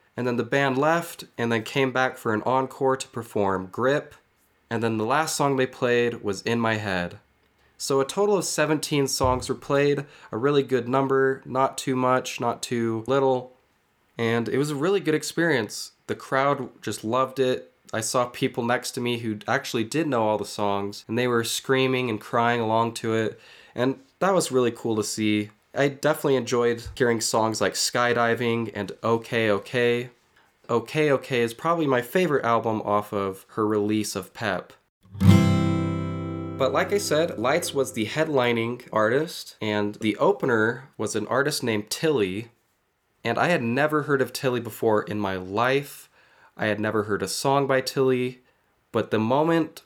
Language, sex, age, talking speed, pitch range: English, male, 20-39, 175 wpm, 110-135 Hz